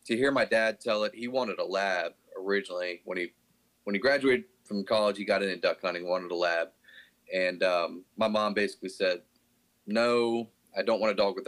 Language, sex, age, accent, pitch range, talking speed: English, male, 30-49, American, 90-110 Hz, 205 wpm